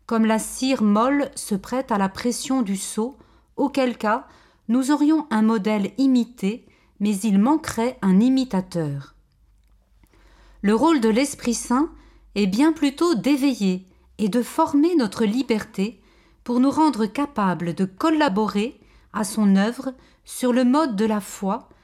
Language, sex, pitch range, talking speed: French, female, 205-270 Hz, 145 wpm